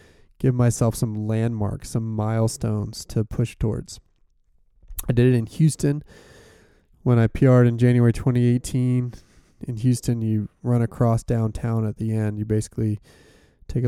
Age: 20-39